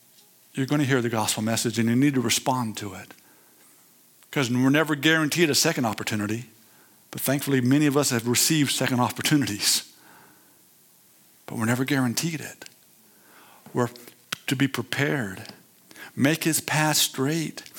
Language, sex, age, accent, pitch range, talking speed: English, male, 50-69, American, 135-180 Hz, 145 wpm